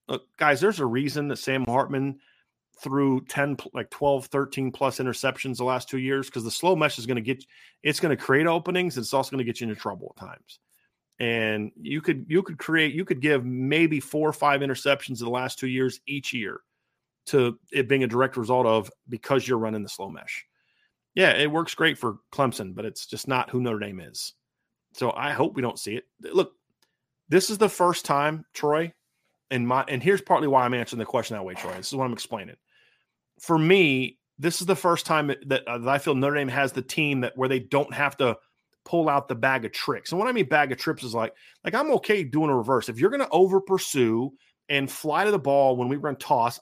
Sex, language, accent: male, English, American